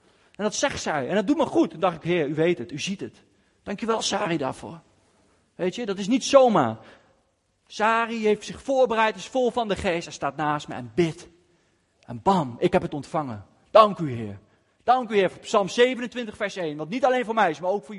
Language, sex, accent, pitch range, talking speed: Dutch, male, Dutch, 160-235 Hz, 235 wpm